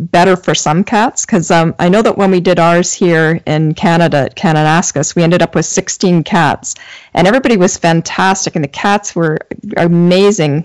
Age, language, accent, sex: 40-59, English, American, female